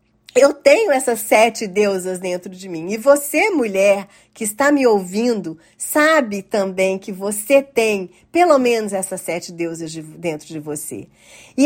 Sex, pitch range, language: female, 195-270 Hz, Portuguese